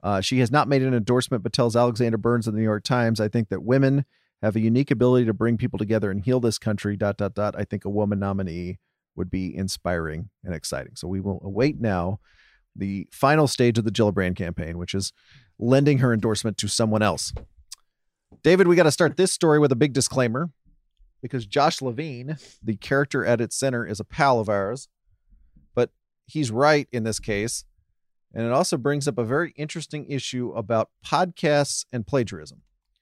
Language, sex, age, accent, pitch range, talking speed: English, male, 40-59, American, 105-135 Hz, 195 wpm